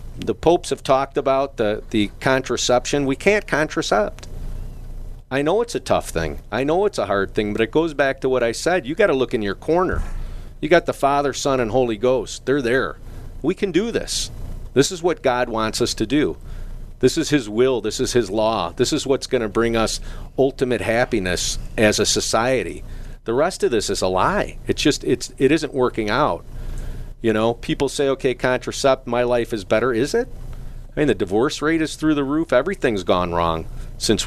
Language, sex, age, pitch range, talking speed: English, male, 40-59, 110-135 Hz, 205 wpm